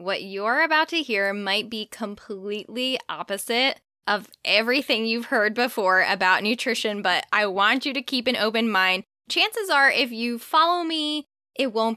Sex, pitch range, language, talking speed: female, 210-270 Hz, English, 165 wpm